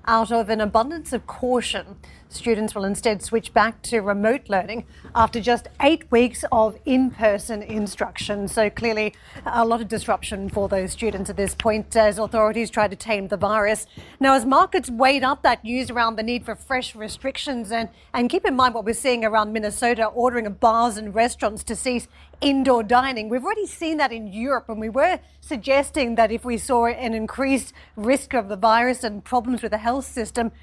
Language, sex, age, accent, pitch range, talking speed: English, female, 40-59, Australian, 225-265 Hz, 190 wpm